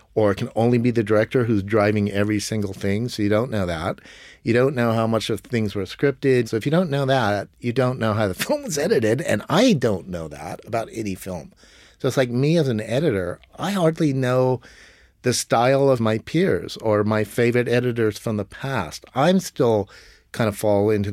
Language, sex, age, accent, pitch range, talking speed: English, male, 50-69, American, 95-120 Hz, 220 wpm